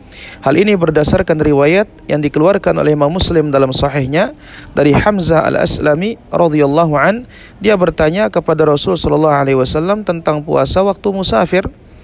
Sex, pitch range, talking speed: male, 145-190 Hz, 125 wpm